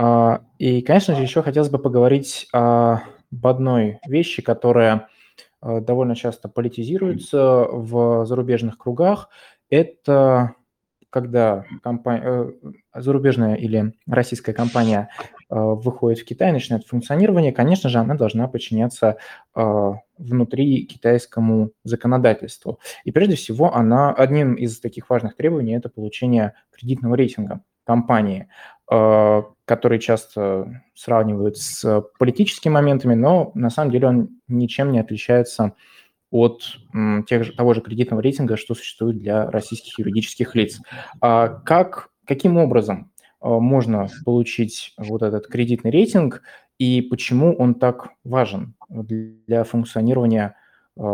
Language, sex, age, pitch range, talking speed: Russian, male, 20-39, 110-130 Hz, 105 wpm